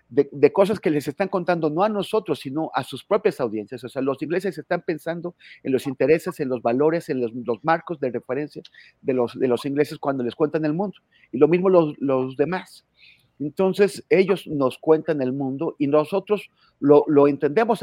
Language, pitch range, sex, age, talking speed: Spanish, 125-170 Hz, male, 40-59, 200 wpm